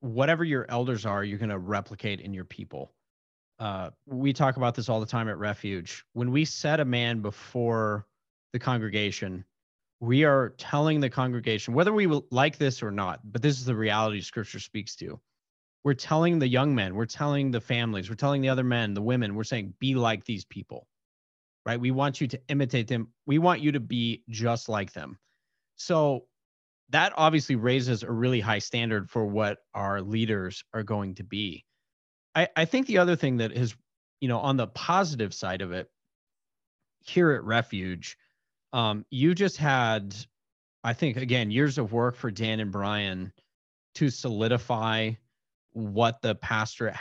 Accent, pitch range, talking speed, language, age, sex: American, 105-130 Hz, 175 wpm, English, 30-49, male